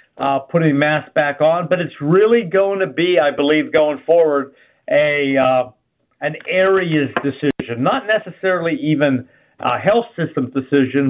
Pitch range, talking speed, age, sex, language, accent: 135-165 Hz, 145 wpm, 50-69, male, English, American